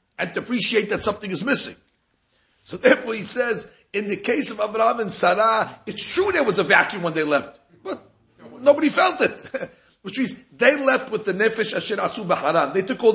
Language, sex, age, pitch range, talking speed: English, male, 50-69, 175-235 Hz, 200 wpm